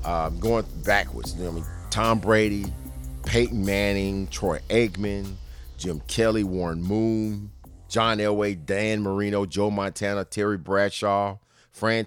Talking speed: 130 wpm